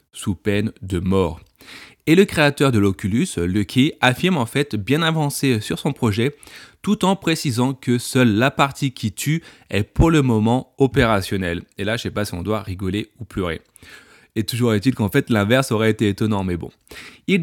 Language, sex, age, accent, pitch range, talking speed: French, male, 30-49, French, 100-130 Hz, 195 wpm